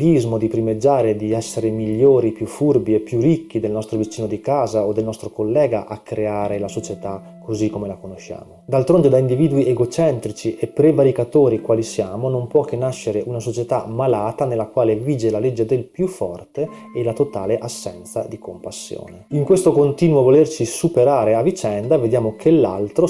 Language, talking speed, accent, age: Italian, 170 wpm, native, 30-49